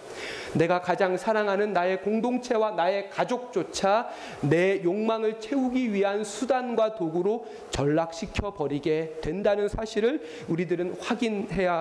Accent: native